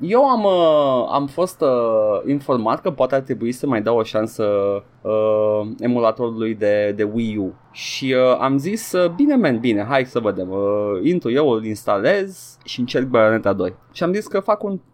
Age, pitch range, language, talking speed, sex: 20-39, 110-140 Hz, Romanian, 190 wpm, male